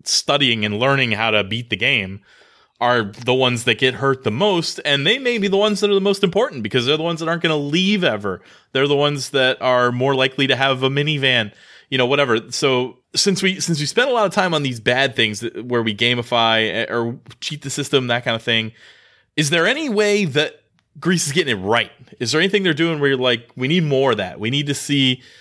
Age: 20-39